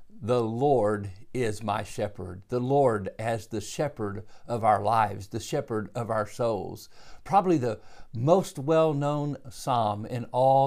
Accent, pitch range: American, 110-145 Hz